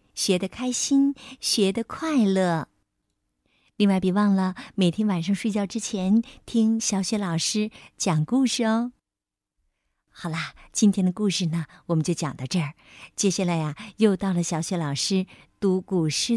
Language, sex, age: Chinese, female, 50-69